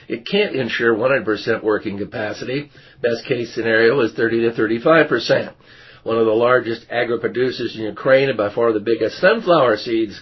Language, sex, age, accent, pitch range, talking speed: English, male, 50-69, American, 105-125 Hz, 160 wpm